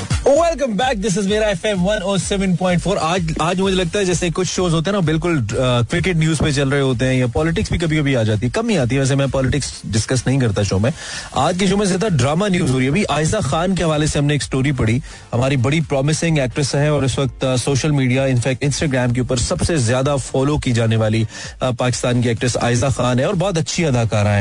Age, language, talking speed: 30-49, Hindi, 115 wpm